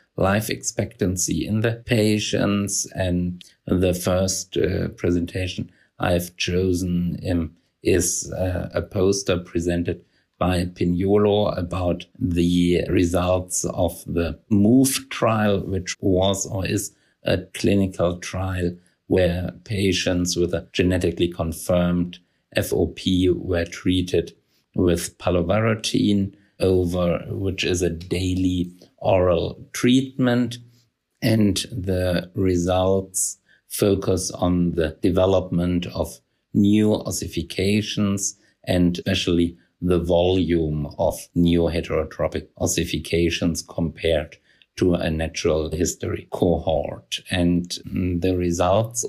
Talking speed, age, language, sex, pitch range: 95 wpm, 50-69, English, male, 85-100 Hz